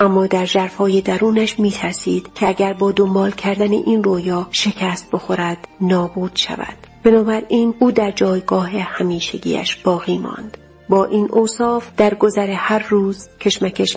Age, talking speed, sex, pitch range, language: 40-59, 135 wpm, female, 185-215 Hz, Persian